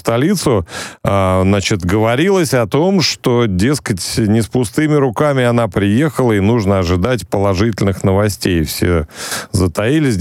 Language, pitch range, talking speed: Russian, 95-120 Hz, 120 wpm